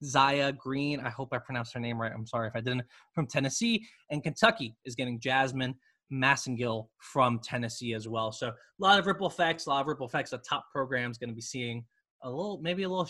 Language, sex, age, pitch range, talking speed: English, male, 20-39, 130-180 Hz, 230 wpm